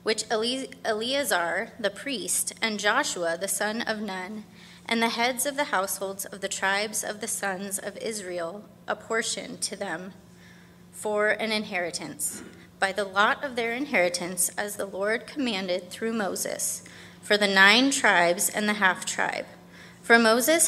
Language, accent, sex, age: English, American, female, 20-39